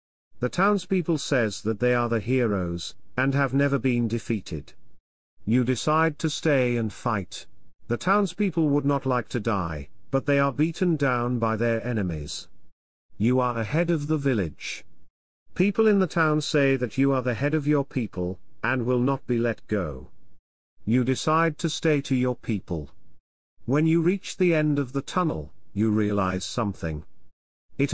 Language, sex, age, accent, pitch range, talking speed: English, male, 50-69, British, 100-145 Hz, 170 wpm